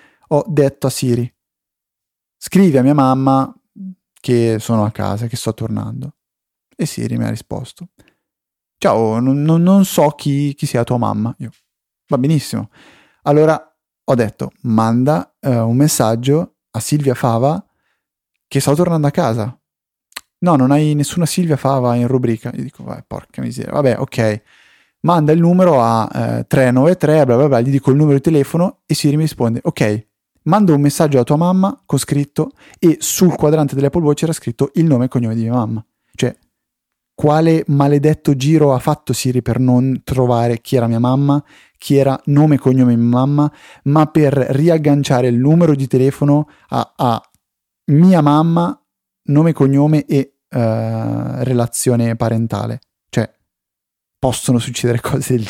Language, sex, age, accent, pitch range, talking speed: Italian, male, 30-49, native, 120-150 Hz, 160 wpm